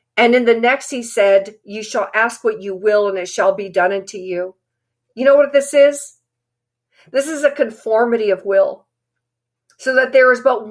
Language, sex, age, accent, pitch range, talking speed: English, female, 50-69, American, 190-225 Hz, 195 wpm